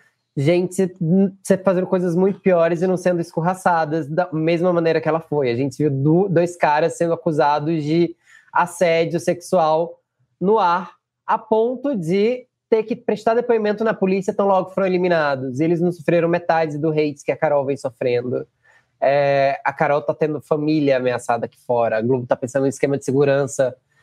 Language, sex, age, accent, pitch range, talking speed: Portuguese, male, 20-39, Brazilian, 145-185 Hz, 170 wpm